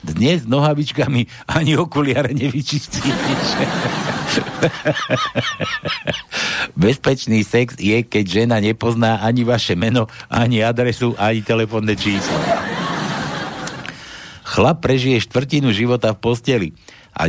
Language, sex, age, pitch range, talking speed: Slovak, male, 60-79, 100-135 Hz, 95 wpm